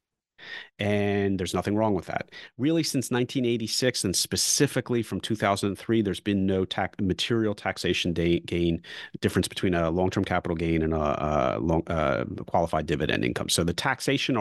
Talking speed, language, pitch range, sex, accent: 140 wpm, English, 85-110 Hz, male, American